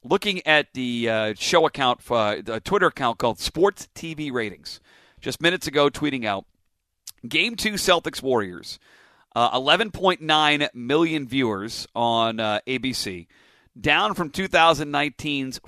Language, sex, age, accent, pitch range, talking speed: English, male, 40-59, American, 120-160 Hz, 125 wpm